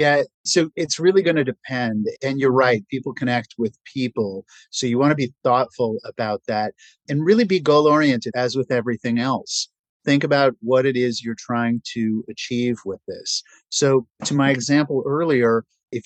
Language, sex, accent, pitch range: English, male, American, 115-140 Hz